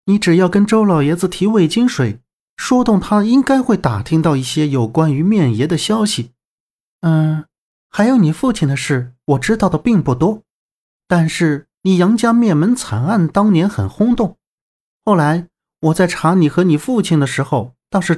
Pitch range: 140-205 Hz